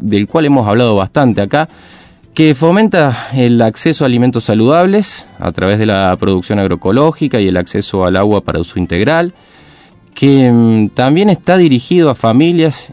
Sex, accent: male, Argentinian